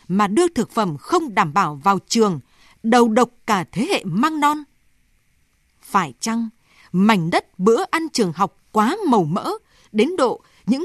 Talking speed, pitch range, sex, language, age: 165 wpm, 195-265 Hz, female, Vietnamese, 20-39